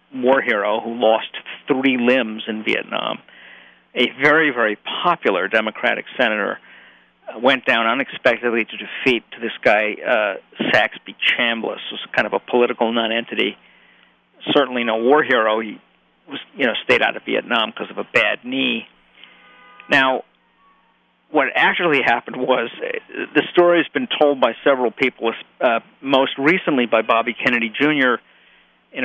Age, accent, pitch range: 50-69, American, 115-140 Hz